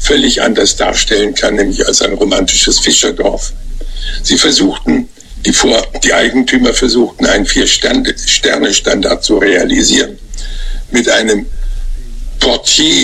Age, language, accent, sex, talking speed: 60-79, German, German, male, 105 wpm